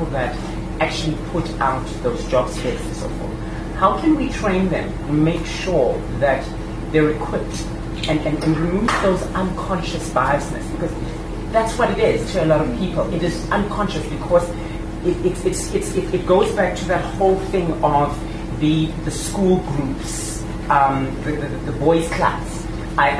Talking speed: 170 wpm